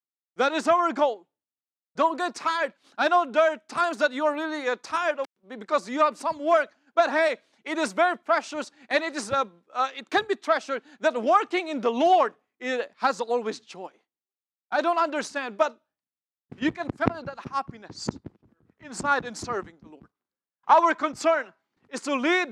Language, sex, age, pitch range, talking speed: English, male, 40-59, 230-320 Hz, 180 wpm